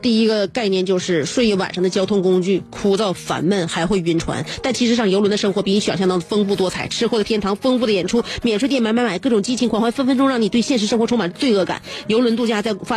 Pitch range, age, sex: 190-240 Hz, 30-49, female